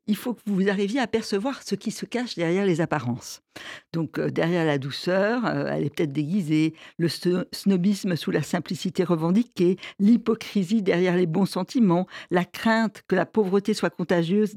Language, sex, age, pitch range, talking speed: French, female, 60-79, 160-215 Hz, 175 wpm